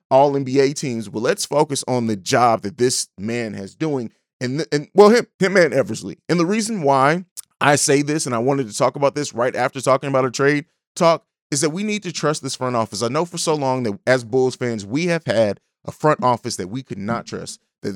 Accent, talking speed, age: American, 240 wpm, 30-49